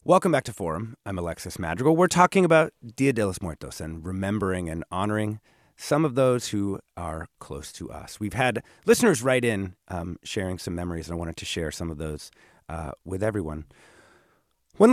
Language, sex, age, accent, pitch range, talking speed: English, male, 30-49, American, 90-125 Hz, 190 wpm